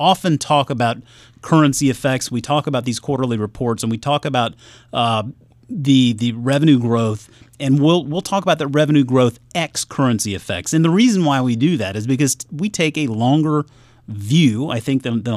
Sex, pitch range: male, 115-155 Hz